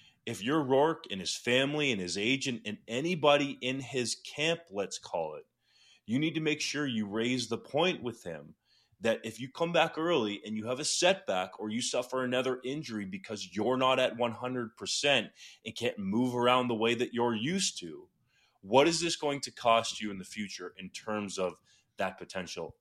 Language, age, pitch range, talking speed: English, 30-49, 100-125 Hz, 195 wpm